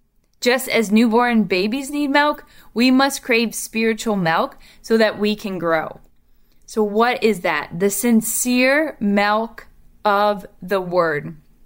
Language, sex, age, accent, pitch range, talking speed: English, female, 10-29, American, 190-245 Hz, 135 wpm